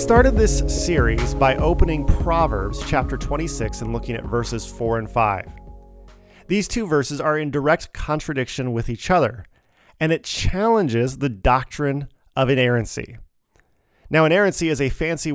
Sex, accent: male, American